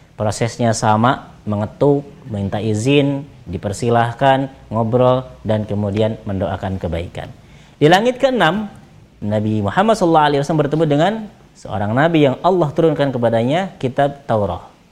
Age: 20-39